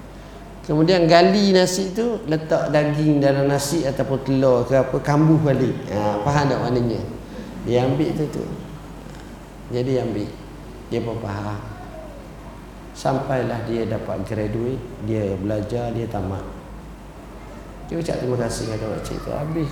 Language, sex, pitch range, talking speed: Malay, male, 110-140 Hz, 130 wpm